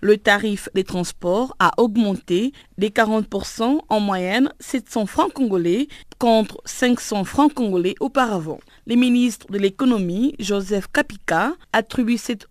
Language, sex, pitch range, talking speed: French, female, 195-245 Hz, 125 wpm